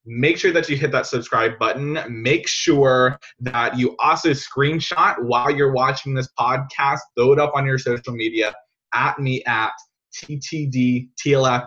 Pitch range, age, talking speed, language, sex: 120-155 Hz, 20-39, 155 wpm, English, male